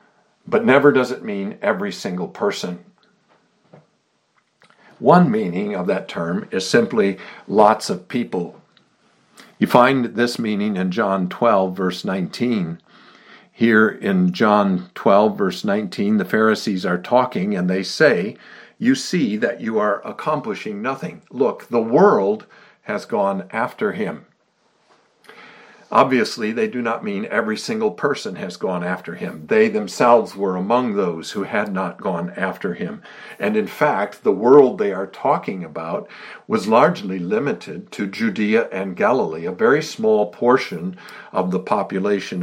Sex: male